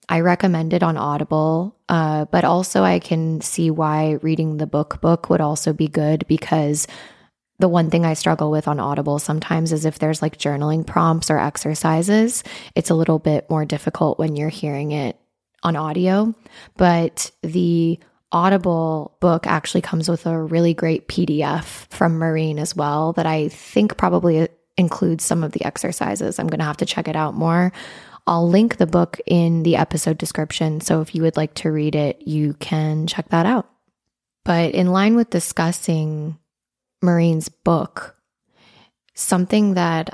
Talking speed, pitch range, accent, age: 170 wpm, 155-175 Hz, American, 20-39